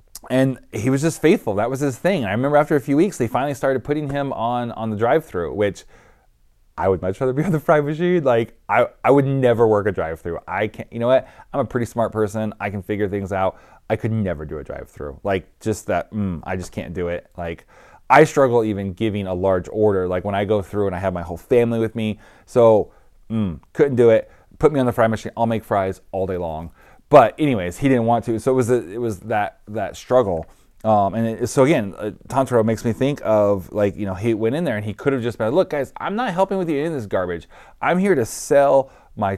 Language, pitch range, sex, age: English, 100-130 Hz, male, 20-39